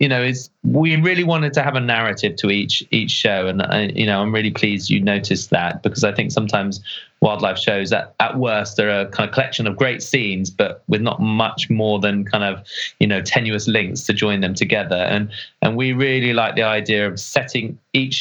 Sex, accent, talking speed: male, British, 220 wpm